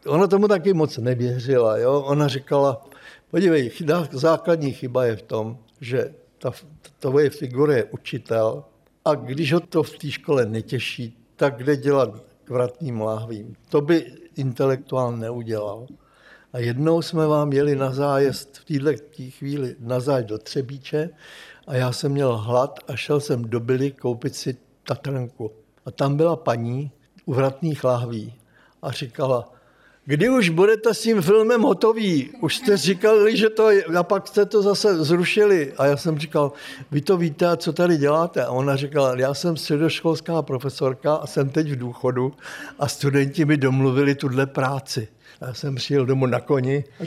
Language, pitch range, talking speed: Czech, 125-160 Hz, 160 wpm